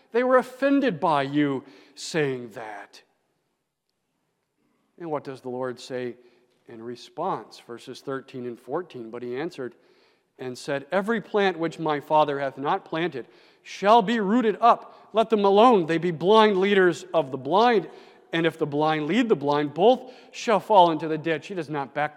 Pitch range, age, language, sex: 130-185 Hz, 50-69, English, male